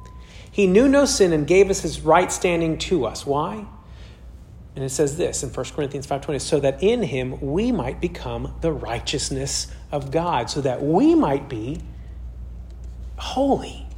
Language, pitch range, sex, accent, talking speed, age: English, 140-230 Hz, male, American, 165 wpm, 40-59